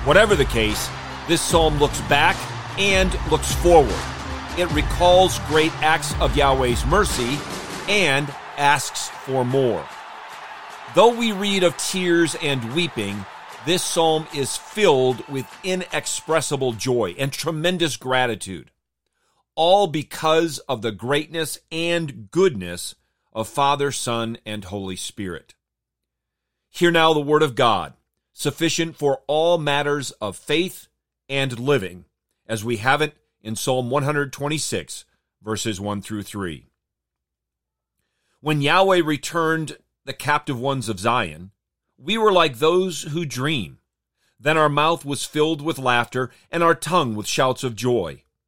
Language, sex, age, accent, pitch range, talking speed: English, male, 40-59, American, 115-160 Hz, 130 wpm